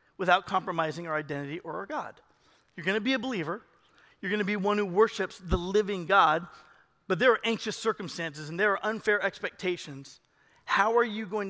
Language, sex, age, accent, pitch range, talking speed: English, male, 40-59, American, 195-250 Hz, 185 wpm